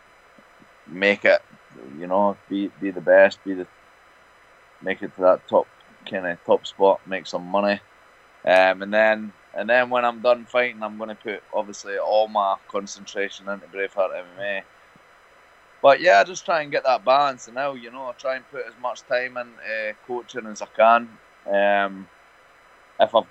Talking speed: 180 wpm